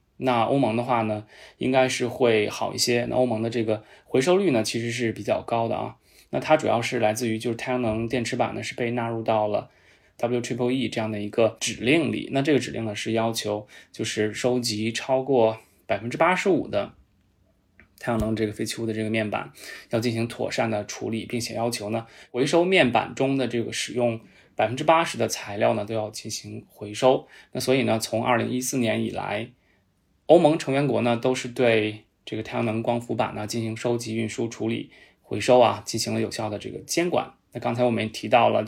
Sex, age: male, 20-39